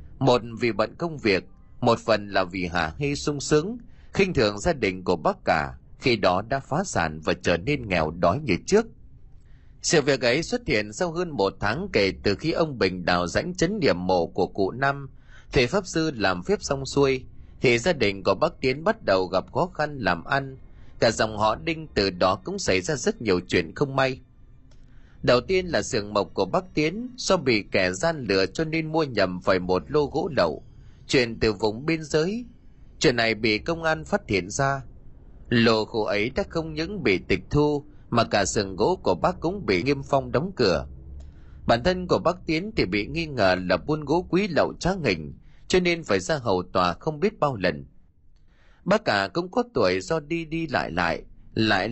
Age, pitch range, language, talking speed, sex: 20-39, 95-160 Hz, Vietnamese, 210 wpm, male